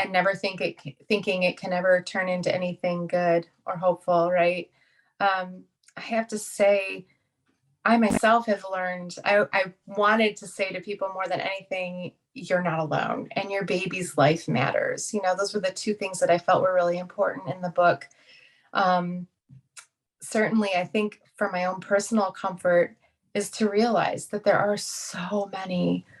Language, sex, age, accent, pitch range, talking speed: English, female, 30-49, American, 175-210 Hz, 170 wpm